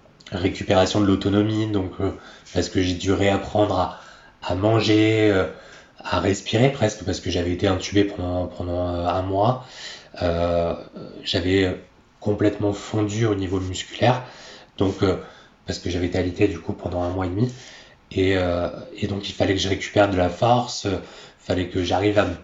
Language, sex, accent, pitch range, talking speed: French, male, French, 90-105 Hz, 175 wpm